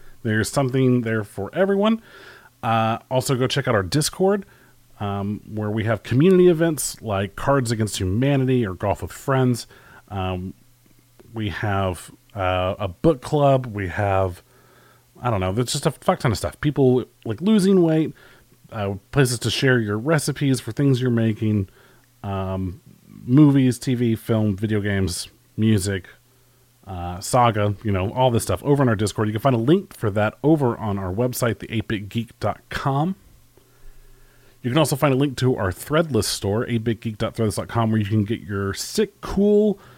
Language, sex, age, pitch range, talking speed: English, male, 30-49, 105-140 Hz, 160 wpm